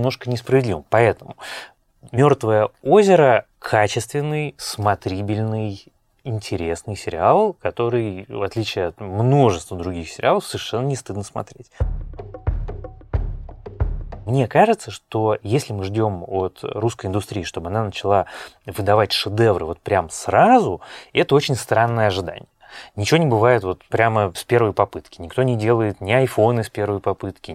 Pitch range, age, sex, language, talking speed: 95-120 Hz, 20-39, male, Russian, 125 wpm